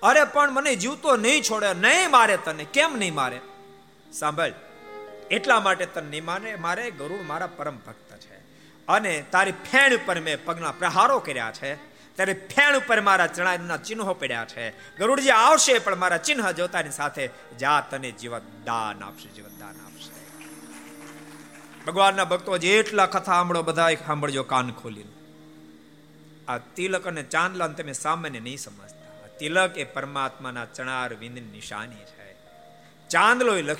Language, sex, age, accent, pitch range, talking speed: Gujarati, male, 50-69, native, 130-200 Hz, 55 wpm